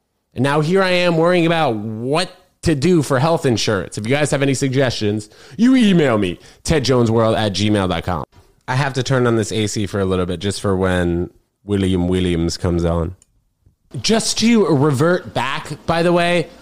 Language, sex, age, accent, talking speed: English, male, 20-39, American, 180 wpm